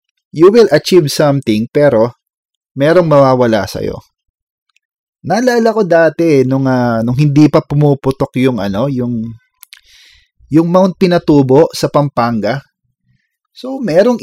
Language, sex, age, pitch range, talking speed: English, male, 20-39, 130-180 Hz, 120 wpm